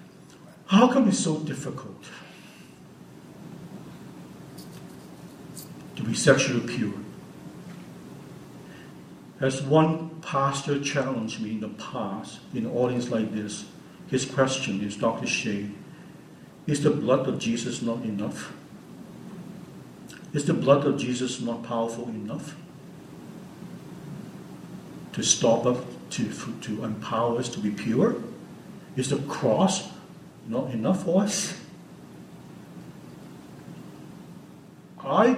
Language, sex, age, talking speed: English, male, 60-79, 100 wpm